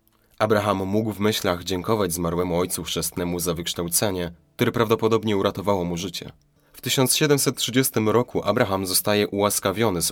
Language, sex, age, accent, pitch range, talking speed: Polish, male, 30-49, native, 90-120 Hz, 130 wpm